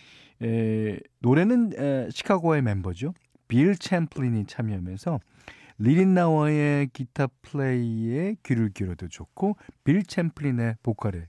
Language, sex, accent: Korean, male, native